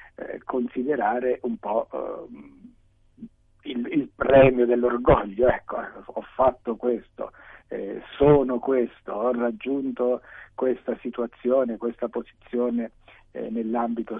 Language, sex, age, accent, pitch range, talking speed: Italian, male, 50-69, native, 120-145 Hz, 85 wpm